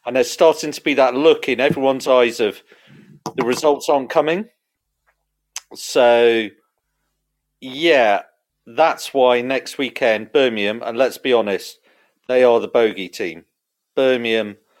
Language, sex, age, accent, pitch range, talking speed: English, male, 40-59, British, 115-165 Hz, 130 wpm